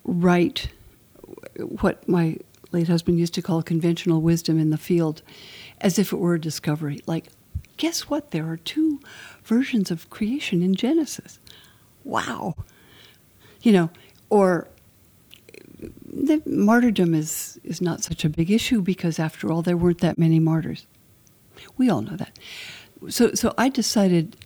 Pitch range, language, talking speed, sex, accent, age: 160-195 Hz, English, 145 wpm, female, American, 60-79